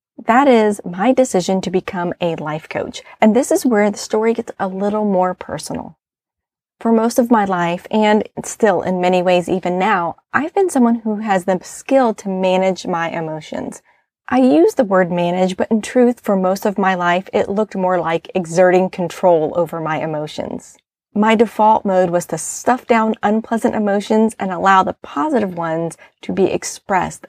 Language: English